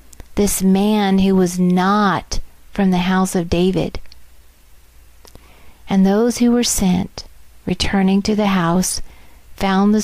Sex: female